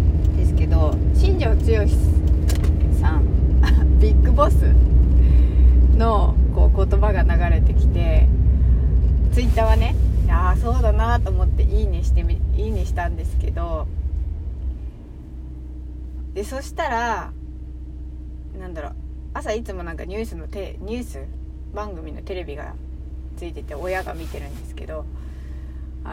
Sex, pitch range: female, 65-80 Hz